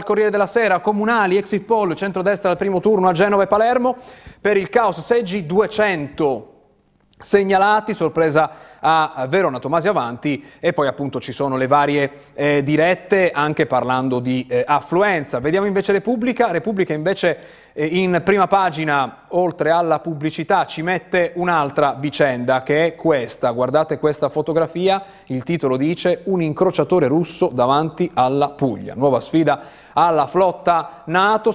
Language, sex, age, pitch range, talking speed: Italian, male, 30-49, 140-185 Hz, 145 wpm